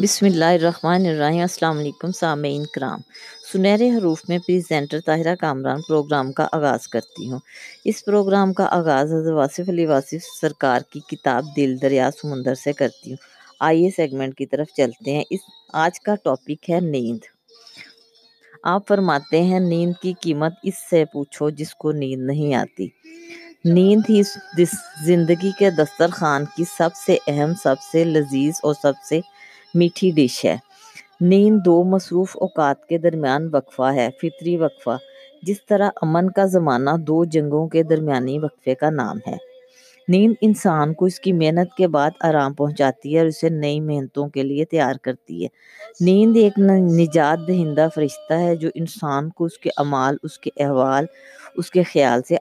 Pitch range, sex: 145-185 Hz, female